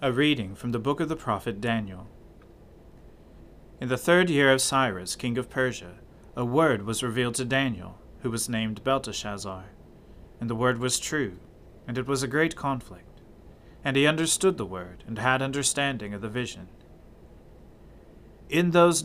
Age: 40-59